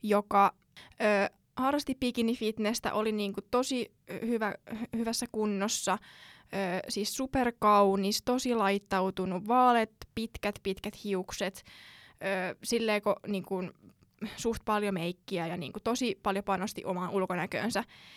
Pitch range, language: 195-230 Hz, Finnish